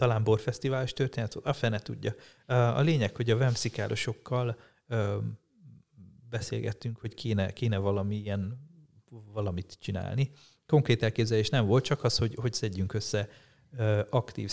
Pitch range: 105-130 Hz